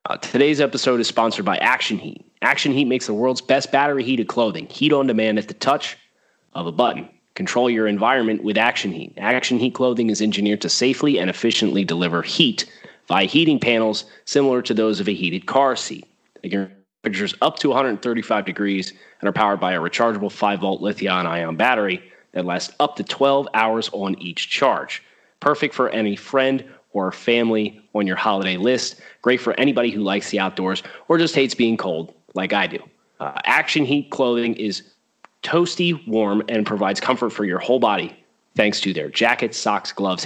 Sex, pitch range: male, 100-125 Hz